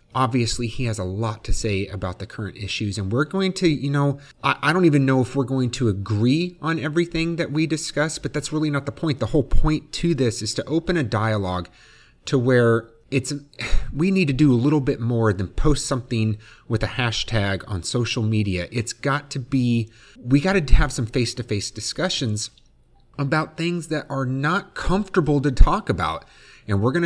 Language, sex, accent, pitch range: English, male, American, 105-135 Hz